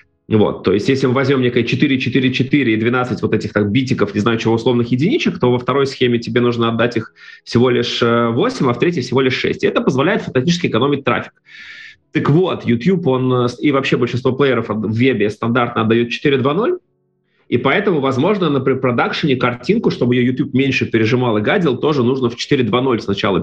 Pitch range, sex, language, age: 115-140 Hz, male, Russian, 30-49